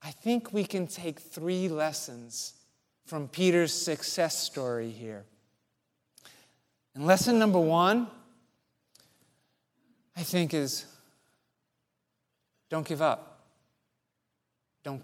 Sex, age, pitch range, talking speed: male, 40-59, 160-245 Hz, 90 wpm